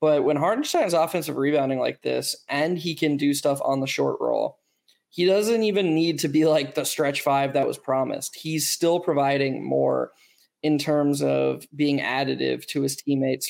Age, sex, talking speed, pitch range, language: 20-39, male, 185 wpm, 140-160 Hz, English